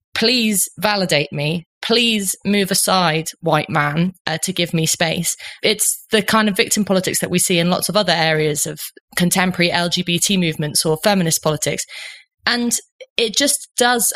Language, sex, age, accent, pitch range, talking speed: English, female, 20-39, British, 170-215 Hz, 160 wpm